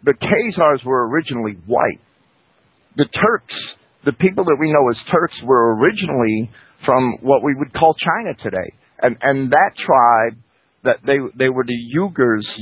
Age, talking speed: 50-69, 155 wpm